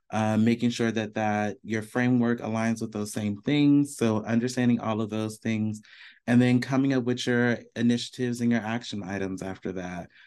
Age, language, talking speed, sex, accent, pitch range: 30-49, English, 180 wpm, male, American, 105-125 Hz